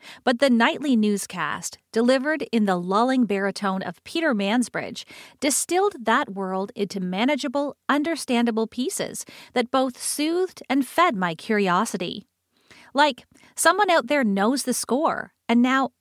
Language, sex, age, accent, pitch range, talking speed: English, female, 40-59, American, 205-285 Hz, 130 wpm